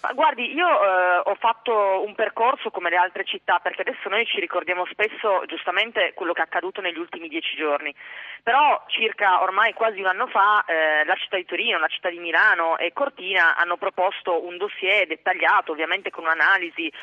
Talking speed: 185 wpm